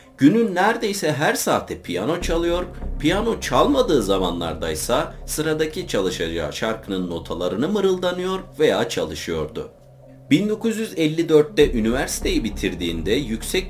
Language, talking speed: Turkish, 90 wpm